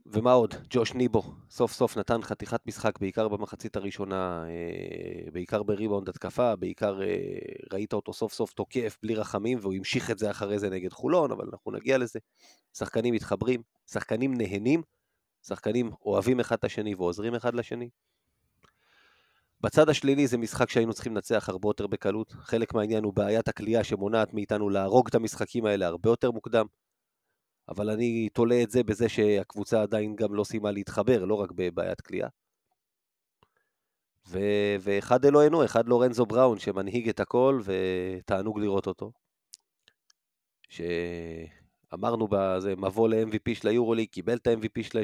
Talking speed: 150 wpm